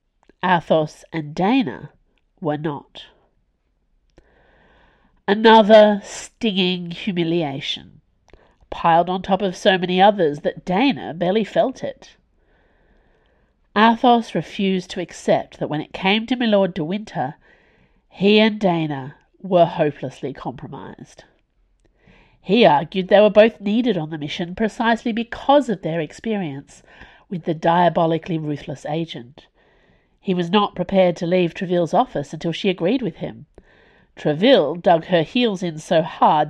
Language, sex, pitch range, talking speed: English, female, 155-210 Hz, 125 wpm